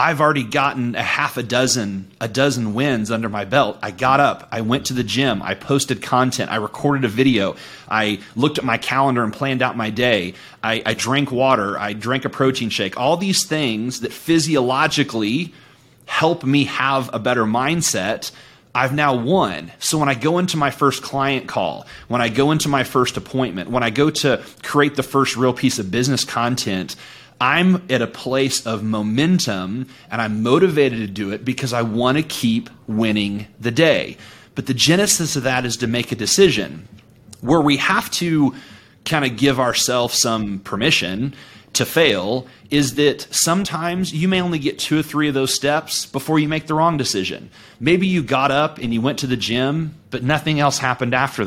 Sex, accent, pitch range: male, American, 120-145 Hz